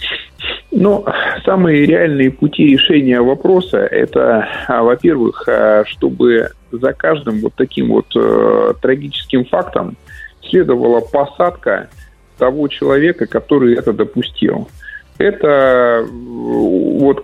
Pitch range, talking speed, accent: 120-165 Hz, 85 wpm, native